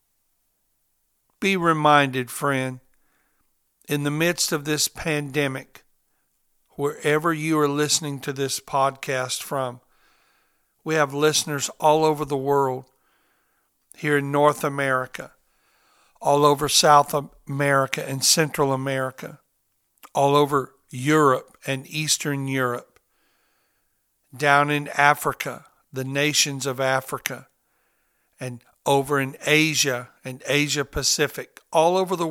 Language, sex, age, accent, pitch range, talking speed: English, male, 60-79, American, 135-150 Hz, 110 wpm